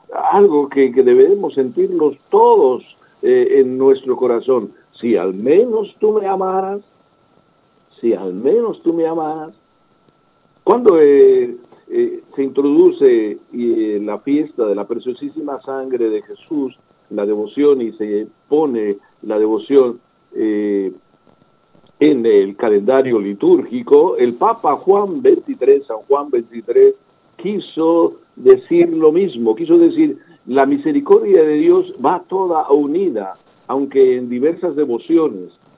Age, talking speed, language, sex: 60-79, 120 wpm, Spanish, male